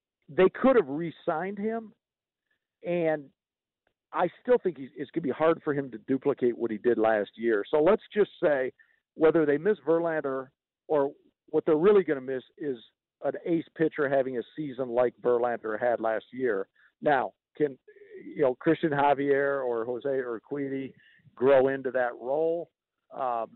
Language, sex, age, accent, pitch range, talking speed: English, male, 50-69, American, 135-175 Hz, 165 wpm